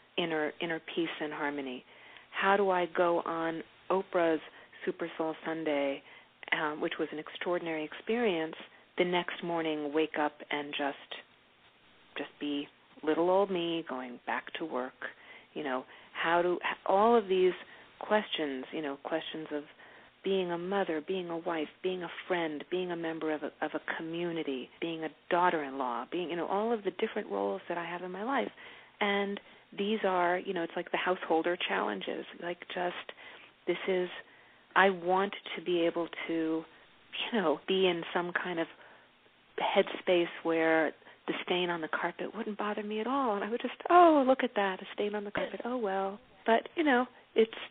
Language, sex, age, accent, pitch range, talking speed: English, female, 40-59, American, 160-200 Hz, 175 wpm